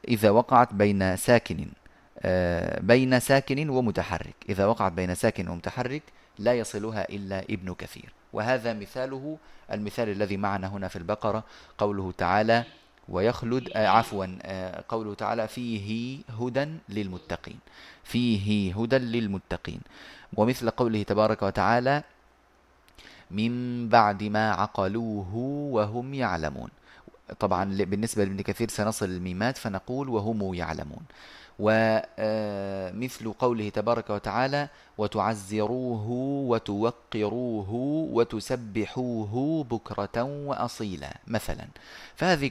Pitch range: 100-125 Hz